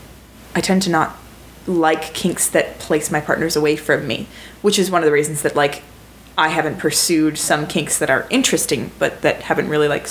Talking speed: 200 wpm